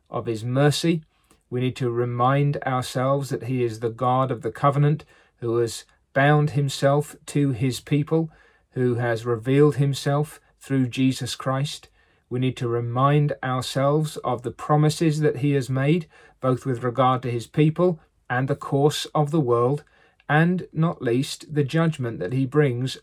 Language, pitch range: English, 120-145 Hz